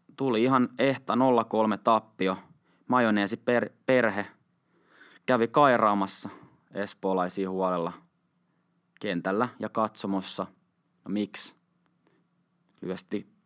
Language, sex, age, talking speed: Finnish, male, 20-39, 80 wpm